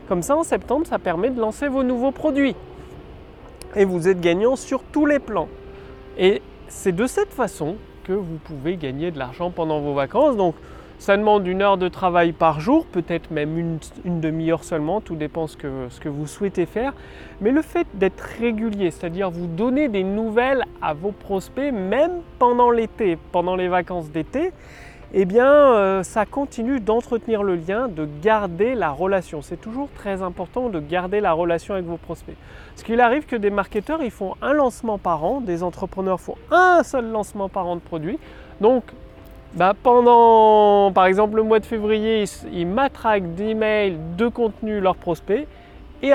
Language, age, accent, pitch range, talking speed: French, 30-49, French, 175-240 Hz, 180 wpm